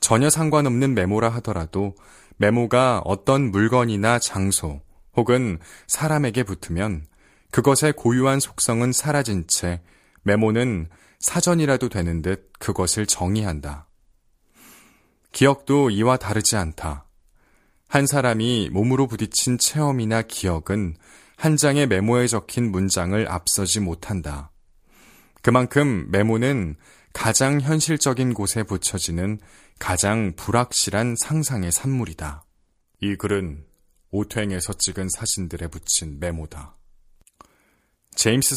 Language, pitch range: Korean, 90-130 Hz